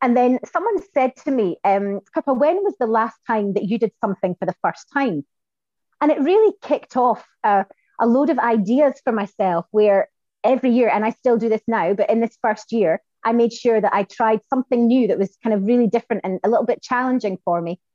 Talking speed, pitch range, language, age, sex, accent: 225 wpm, 195-240 Hz, English, 30-49, female, British